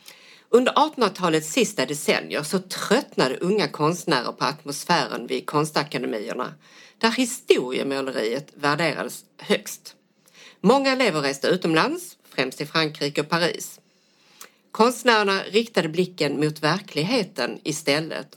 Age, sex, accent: 50-69, female, Swedish